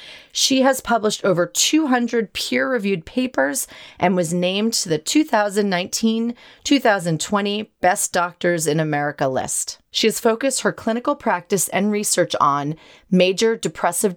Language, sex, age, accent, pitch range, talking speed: English, female, 30-49, American, 165-225 Hz, 125 wpm